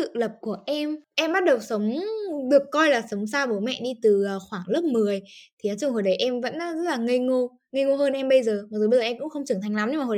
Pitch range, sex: 225-290 Hz, female